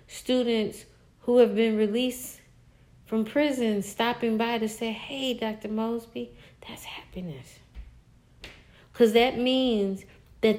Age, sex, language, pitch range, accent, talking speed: 40-59, female, English, 185-245 Hz, American, 115 wpm